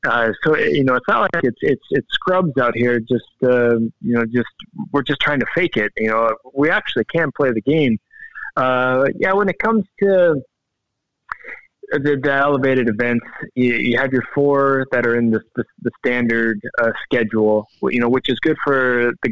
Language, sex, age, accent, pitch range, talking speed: English, male, 20-39, American, 115-145 Hz, 195 wpm